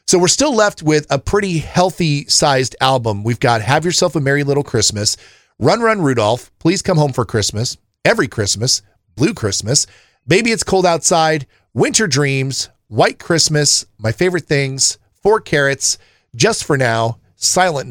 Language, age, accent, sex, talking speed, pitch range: English, 40-59, American, male, 155 wpm, 115-165 Hz